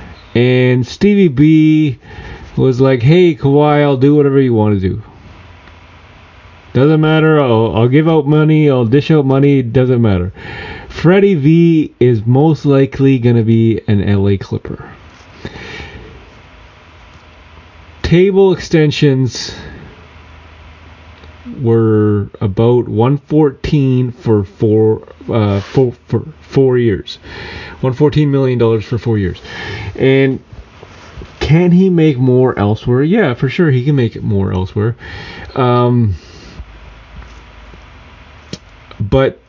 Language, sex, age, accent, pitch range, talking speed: English, male, 30-49, American, 100-140 Hz, 110 wpm